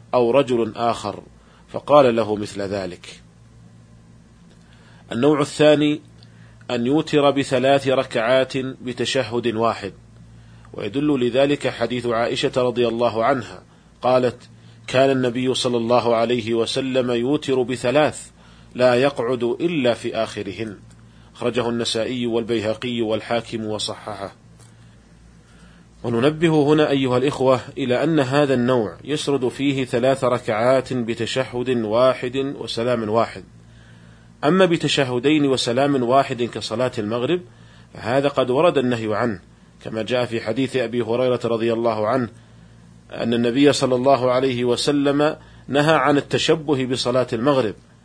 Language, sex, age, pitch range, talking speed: Arabic, male, 40-59, 110-130 Hz, 110 wpm